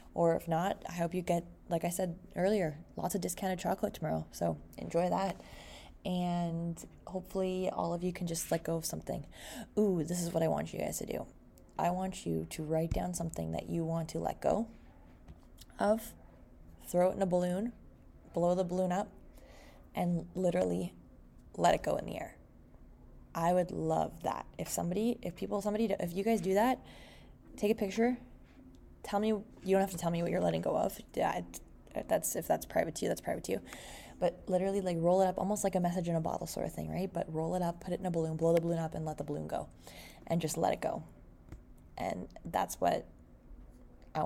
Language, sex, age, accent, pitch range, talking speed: English, female, 20-39, American, 160-190 Hz, 210 wpm